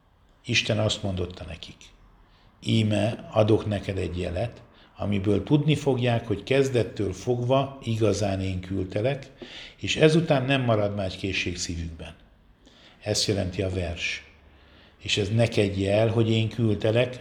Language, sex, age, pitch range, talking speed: Hungarian, male, 50-69, 100-125 Hz, 130 wpm